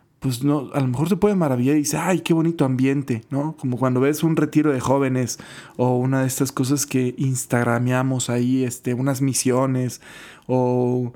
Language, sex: Spanish, male